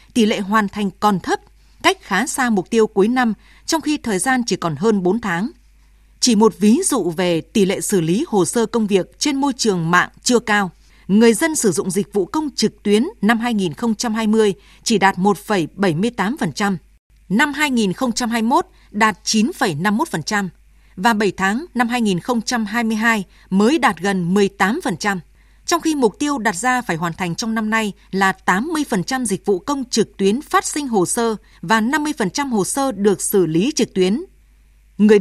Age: 20-39